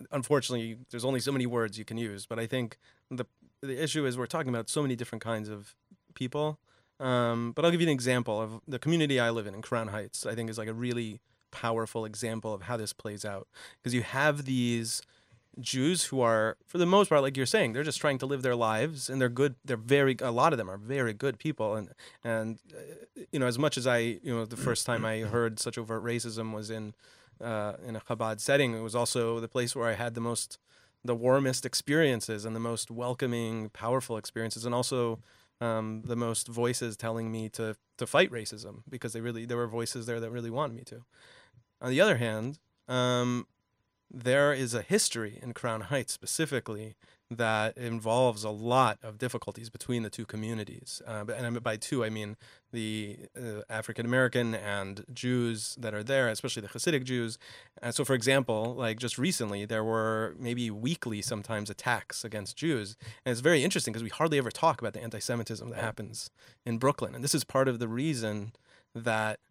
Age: 30-49